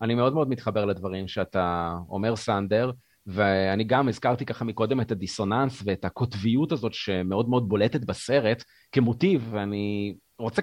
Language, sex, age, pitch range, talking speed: Hebrew, male, 30-49, 110-160 Hz, 140 wpm